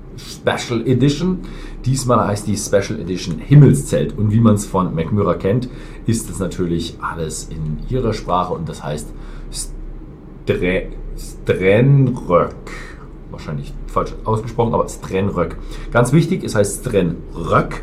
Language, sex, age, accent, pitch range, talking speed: German, male, 40-59, German, 90-130 Hz, 120 wpm